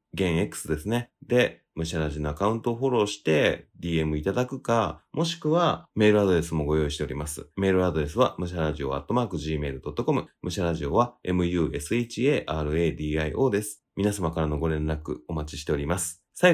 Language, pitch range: Japanese, 80-105 Hz